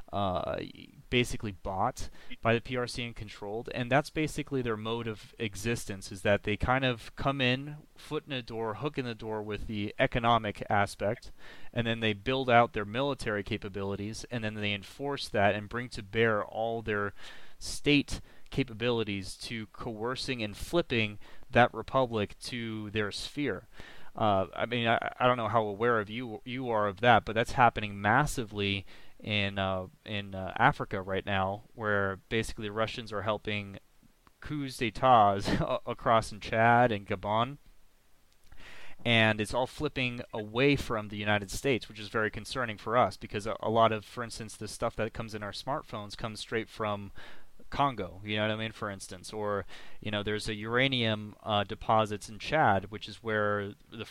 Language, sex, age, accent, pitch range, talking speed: English, male, 30-49, American, 105-120 Hz, 170 wpm